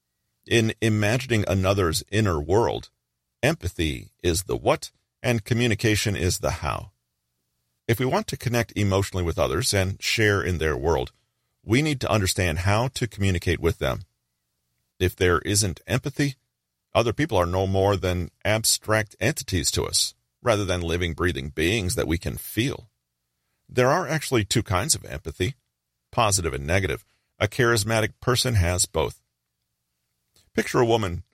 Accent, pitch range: American, 75-115 Hz